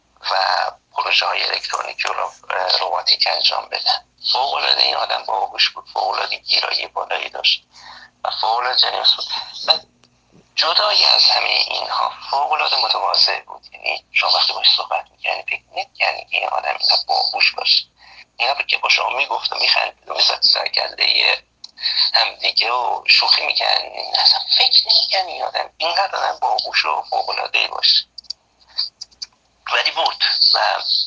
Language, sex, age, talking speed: Persian, male, 50-69, 140 wpm